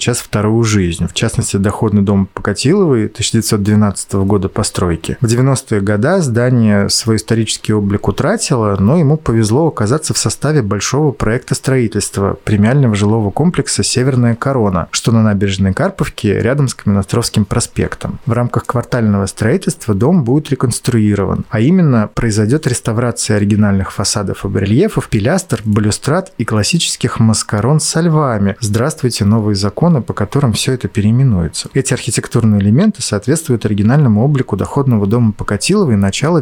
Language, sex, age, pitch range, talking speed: Russian, male, 30-49, 105-135 Hz, 130 wpm